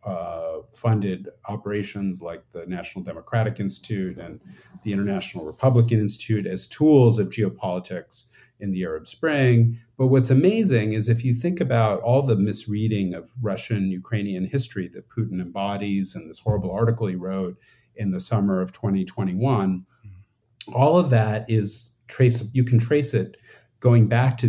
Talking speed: 150 wpm